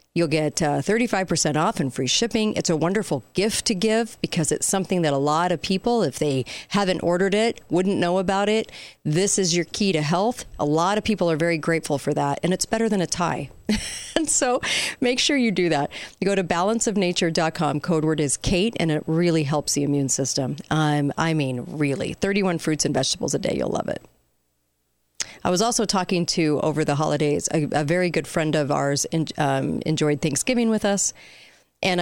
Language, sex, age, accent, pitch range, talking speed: English, female, 40-59, American, 150-190 Hz, 205 wpm